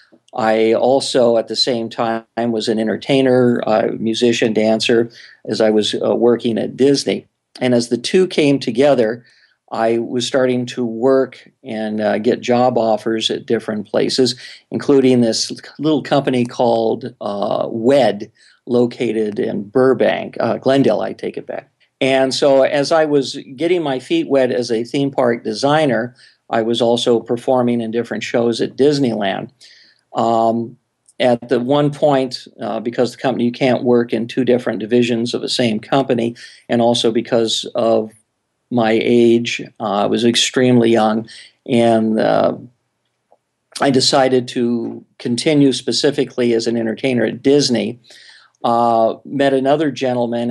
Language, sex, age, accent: English, male, 50-69, American